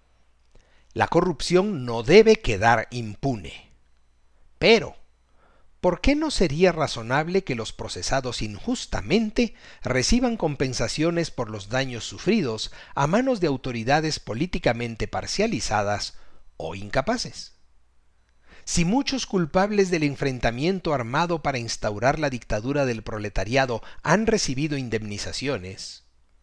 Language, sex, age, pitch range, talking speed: Spanish, male, 50-69, 95-155 Hz, 100 wpm